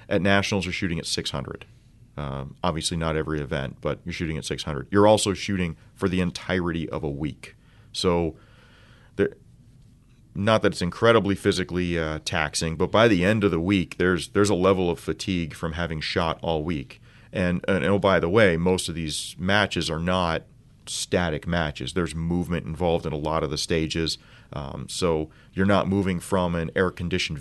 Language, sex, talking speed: English, male, 180 wpm